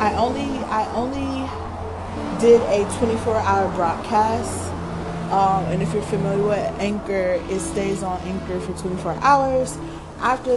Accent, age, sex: American, 20-39, female